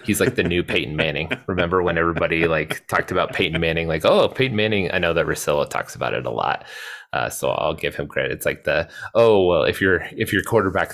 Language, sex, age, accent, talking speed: English, male, 20-39, American, 235 wpm